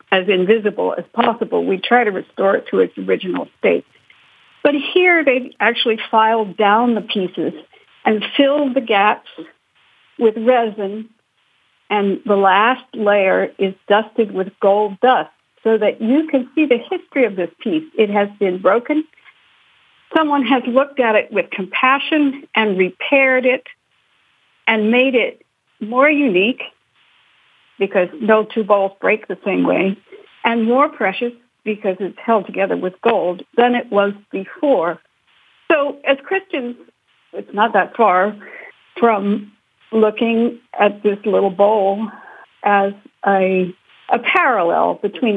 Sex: female